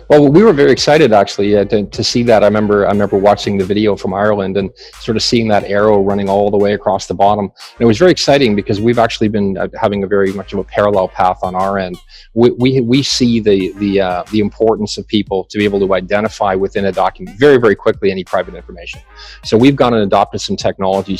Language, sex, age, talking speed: English, male, 40-59, 240 wpm